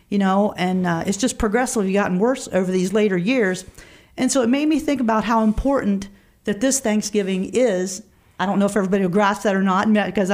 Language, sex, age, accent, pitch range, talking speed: English, female, 40-59, American, 190-235 Hz, 215 wpm